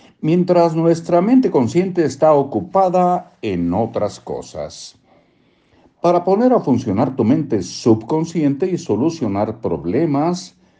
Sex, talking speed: male, 105 wpm